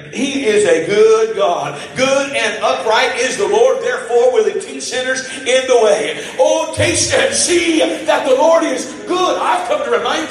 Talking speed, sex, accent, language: 185 wpm, male, American, English